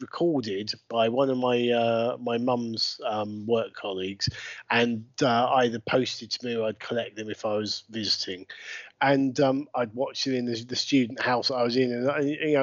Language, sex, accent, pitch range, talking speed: English, male, British, 125-160 Hz, 200 wpm